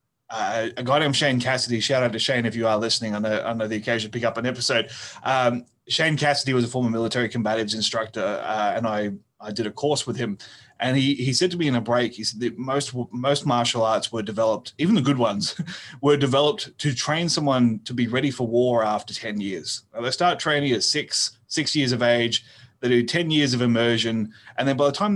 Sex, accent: male, Australian